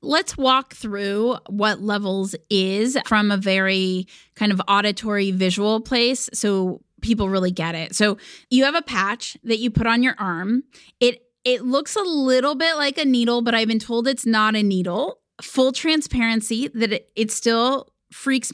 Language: English